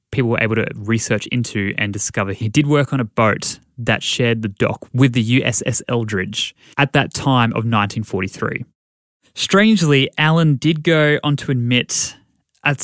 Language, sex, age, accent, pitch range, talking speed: English, male, 20-39, Australian, 105-130 Hz, 165 wpm